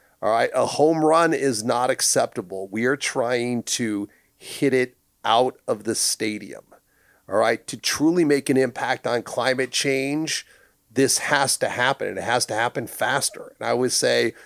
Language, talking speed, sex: English, 175 wpm, male